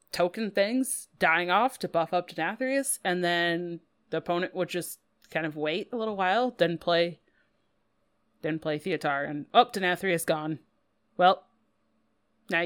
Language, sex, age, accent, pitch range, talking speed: English, female, 30-49, American, 165-210 Hz, 145 wpm